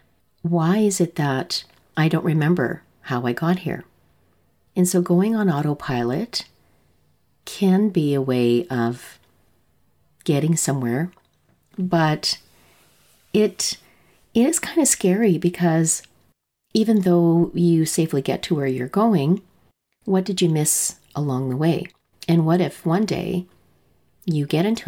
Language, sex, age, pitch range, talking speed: English, female, 40-59, 135-180 Hz, 135 wpm